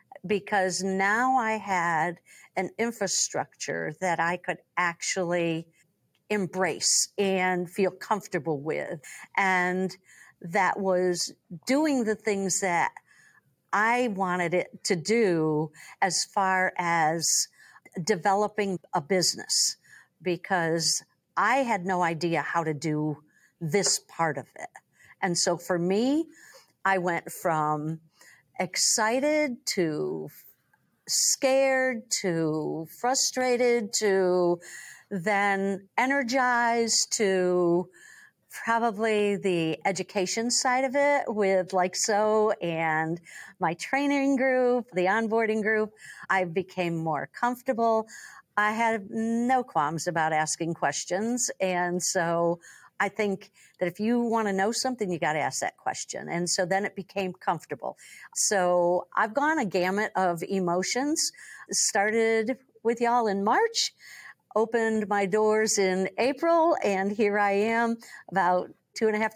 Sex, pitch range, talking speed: female, 180-230 Hz, 120 wpm